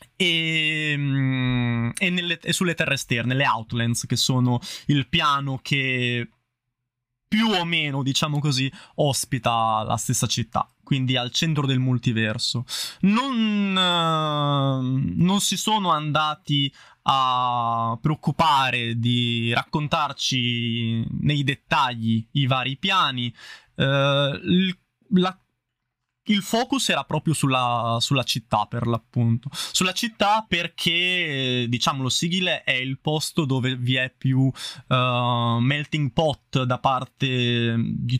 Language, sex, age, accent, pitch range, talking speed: Italian, male, 20-39, native, 125-155 Hz, 110 wpm